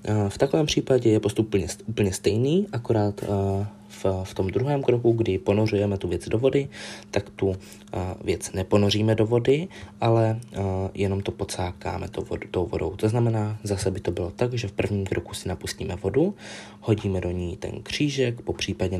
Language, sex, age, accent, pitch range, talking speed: Czech, male, 20-39, native, 95-110 Hz, 160 wpm